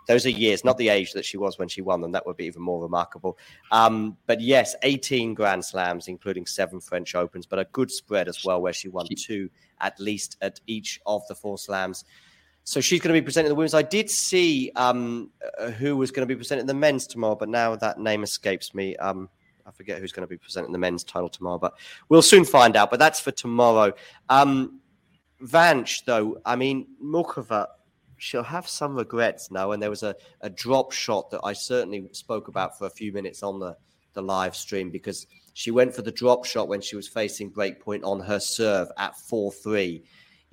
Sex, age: male, 30-49